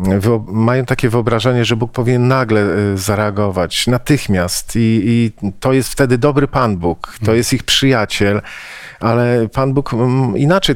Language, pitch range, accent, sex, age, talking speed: Polish, 100-125 Hz, native, male, 40-59, 140 wpm